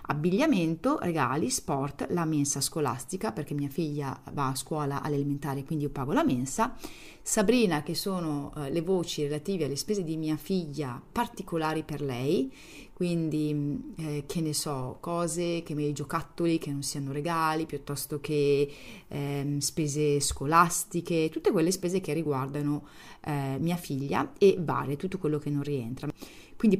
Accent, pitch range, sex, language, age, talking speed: native, 145-180 Hz, female, Italian, 30-49, 150 wpm